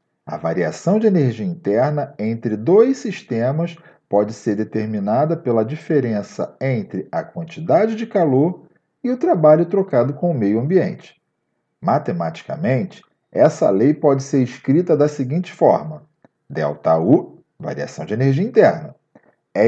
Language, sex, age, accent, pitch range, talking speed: Portuguese, male, 40-59, Brazilian, 120-190 Hz, 125 wpm